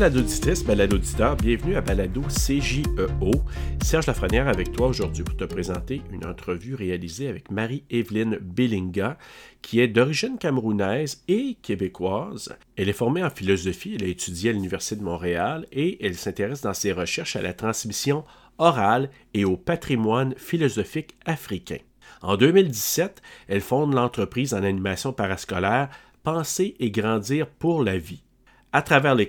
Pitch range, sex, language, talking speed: 100-140 Hz, male, French, 150 wpm